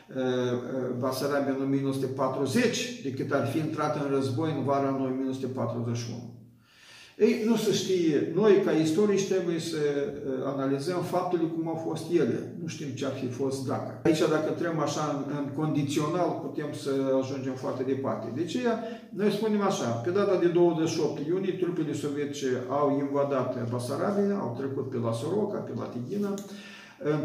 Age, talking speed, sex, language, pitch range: 50-69, 155 wpm, male, Romanian, 135-175 Hz